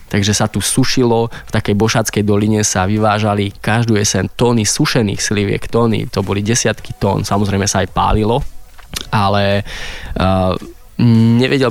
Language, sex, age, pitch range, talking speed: Slovak, male, 20-39, 100-115 Hz, 140 wpm